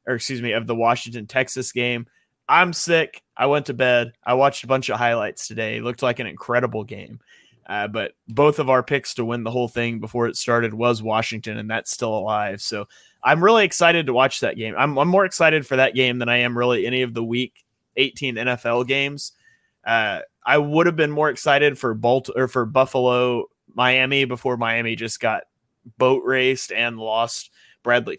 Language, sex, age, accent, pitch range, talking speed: English, male, 20-39, American, 120-140 Hz, 200 wpm